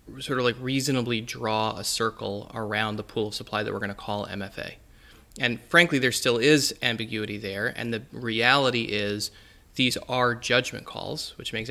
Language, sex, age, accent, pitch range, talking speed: English, male, 20-39, American, 105-130 Hz, 180 wpm